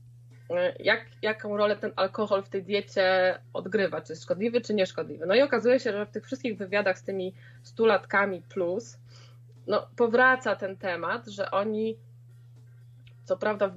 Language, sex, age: Polish, female, 20-39